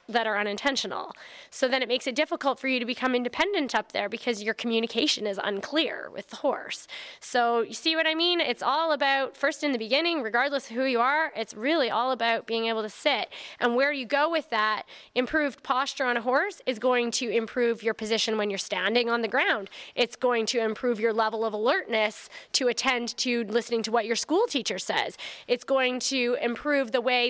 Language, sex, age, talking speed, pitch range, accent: English, female, 20-39, 215 wpm, 230-275 Hz, American